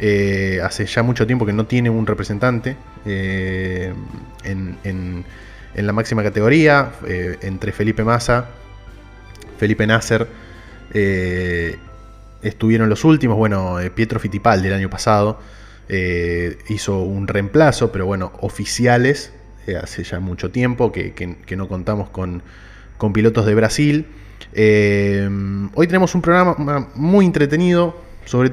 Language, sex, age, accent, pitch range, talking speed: Spanish, male, 20-39, Argentinian, 100-115 Hz, 135 wpm